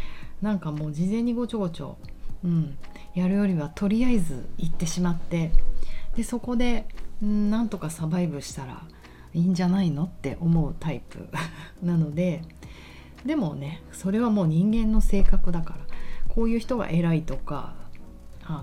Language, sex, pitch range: Japanese, female, 150-195 Hz